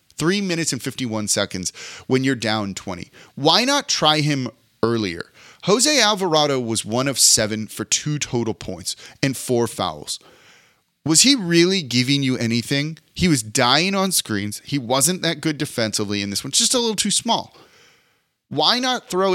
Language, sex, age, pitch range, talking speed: English, male, 30-49, 120-165 Hz, 165 wpm